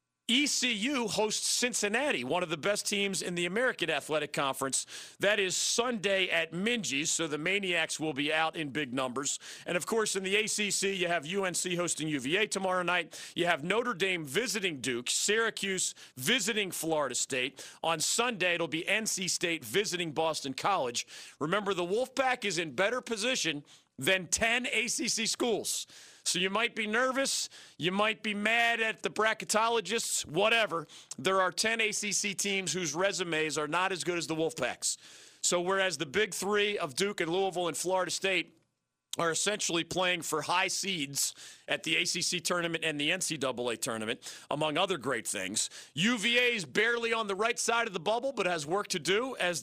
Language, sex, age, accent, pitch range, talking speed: English, male, 40-59, American, 160-210 Hz, 175 wpm